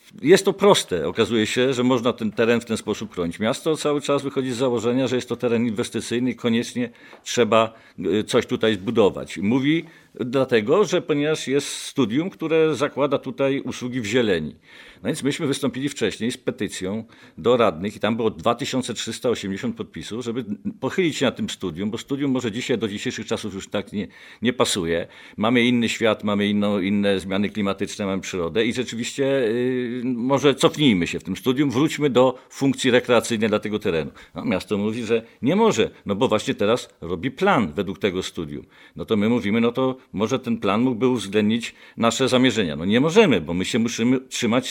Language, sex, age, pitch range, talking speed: Polish, male, 50-69, 105-135 Hz, 180 wpm